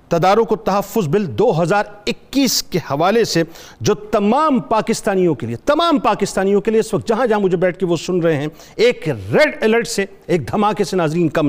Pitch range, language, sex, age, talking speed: 195-250 Hz, Urdu, male, 50-69, 205 wpm